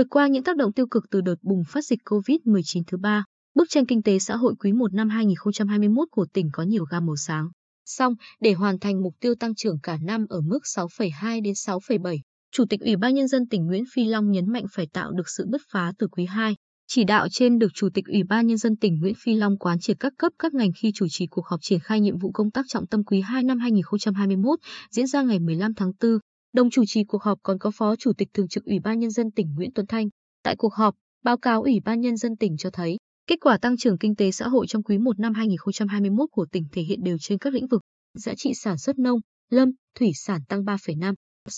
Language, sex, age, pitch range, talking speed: Vietnamese, female, 20-39, 195-240 Hz, 250 wpm